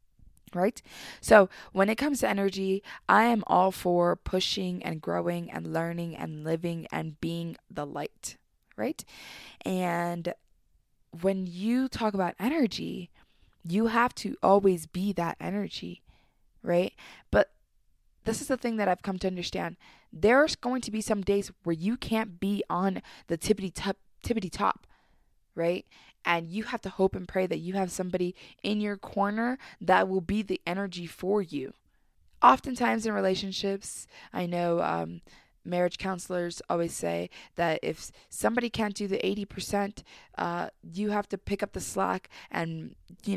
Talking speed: 155 wpm